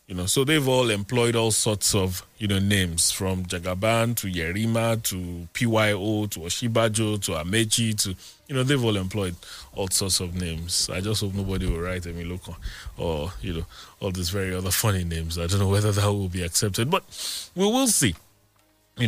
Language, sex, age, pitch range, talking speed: English, male, 20-39, 90-110 Hz, 195 wpm